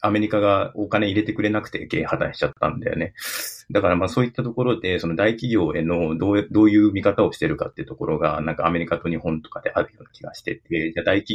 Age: 30-49